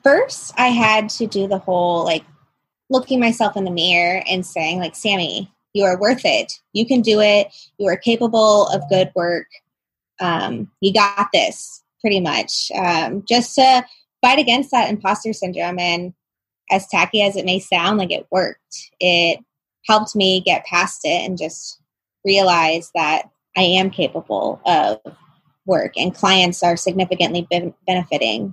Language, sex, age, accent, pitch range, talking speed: English, female, 20-39, American, 175-205 Hz, 160 wpm